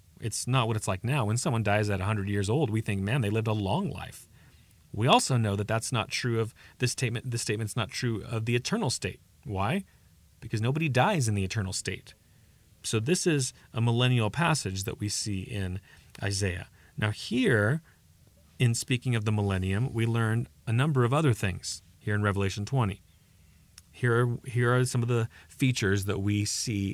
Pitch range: 95-125 Hz